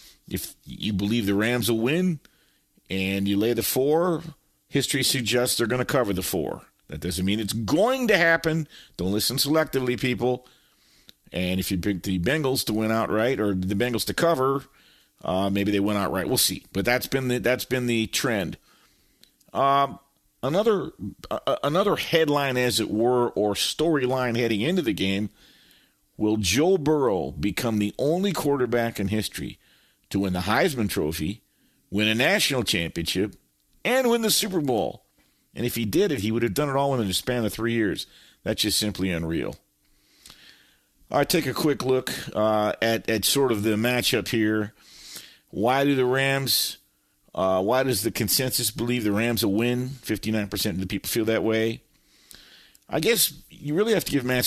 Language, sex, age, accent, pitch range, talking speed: English, male, 50-69, American, 105-135 Hz, 175 wpm